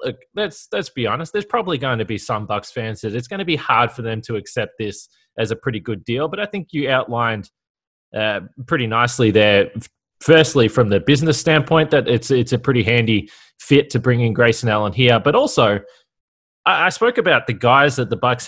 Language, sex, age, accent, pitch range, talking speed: English, male, 20-39, Australian, 110-135 Hz, 220 wpm